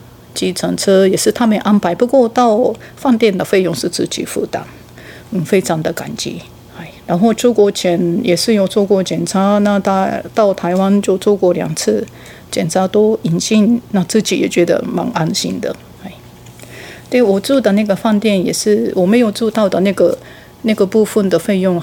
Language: Japanese